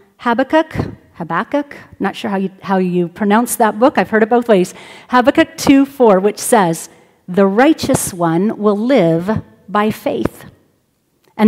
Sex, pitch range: female, 195-250 Hz